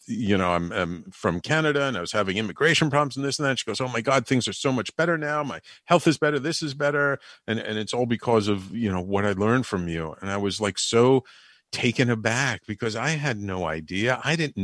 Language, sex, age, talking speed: English, male, 50-69, 255 wpm